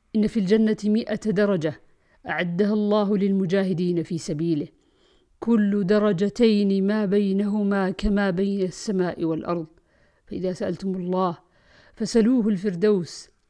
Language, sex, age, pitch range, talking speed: Arabic, female, 50-69, 180-215 Hz, 100 wpm